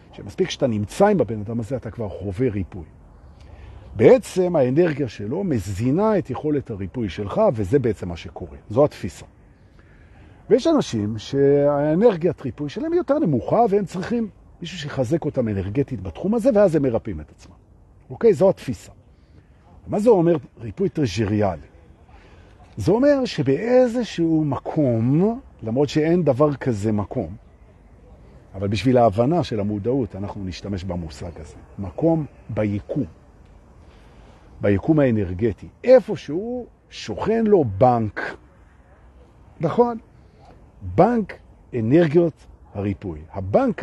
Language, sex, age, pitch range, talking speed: Hebrew, male, 50-69, 100-165 Hz, 110 wpm